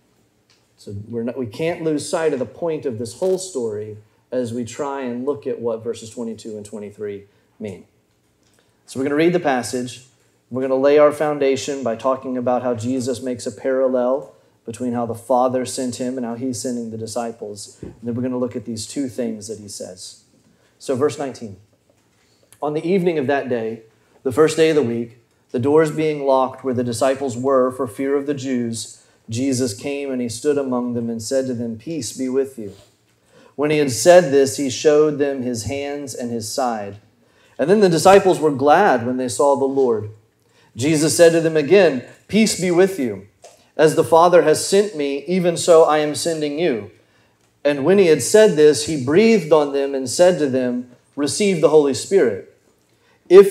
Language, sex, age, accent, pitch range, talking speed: English, male, 30-49, American, 120-155 Hz, 200 wpm